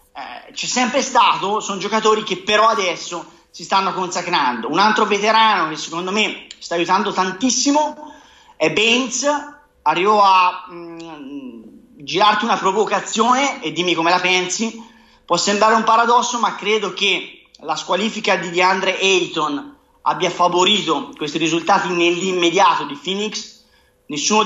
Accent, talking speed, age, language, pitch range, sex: native, 130 wpm, 30-49, Italian, 165-210 Hz, male